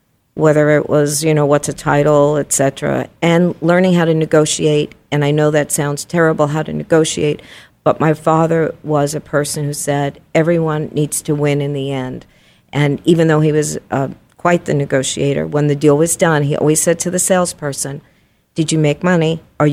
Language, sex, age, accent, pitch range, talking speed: English, female, 50-69, American, 145-160 Hz, 195 wpm